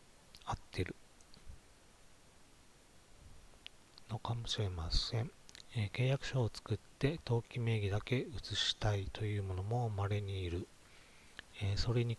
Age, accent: 40-59, native